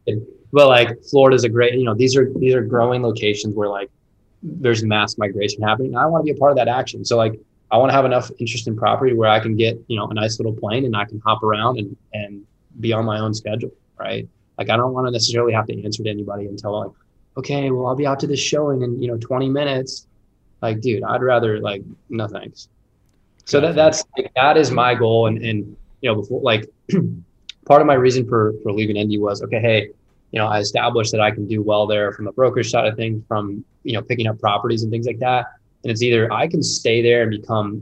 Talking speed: 250 wpm